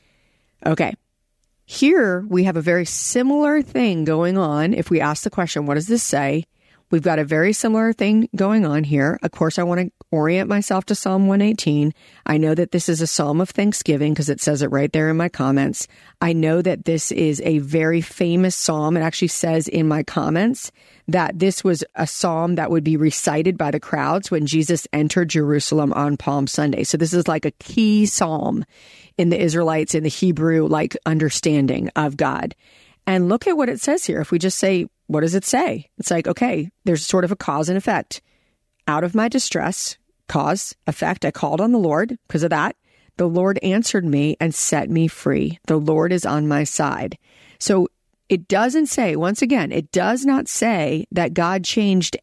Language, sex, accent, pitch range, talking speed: English, female, American, 160-200 Hz, 200 wpm